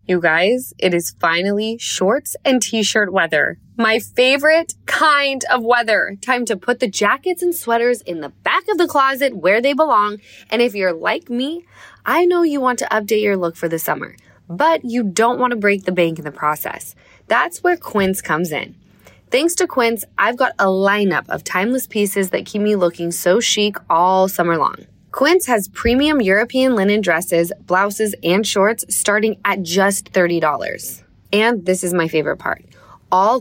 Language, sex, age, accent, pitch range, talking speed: English, female, 20-39, American, 185-255 Hz, 180 wpm